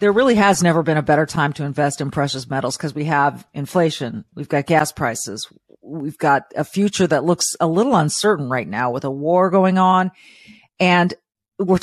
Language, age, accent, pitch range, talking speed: English, 40-59, American, 150-195 Hz, 200 wpm